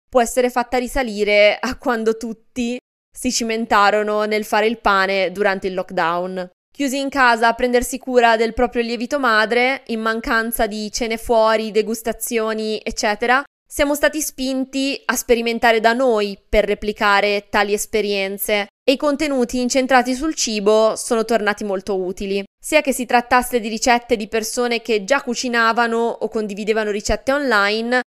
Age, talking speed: 20-39, 145 wpm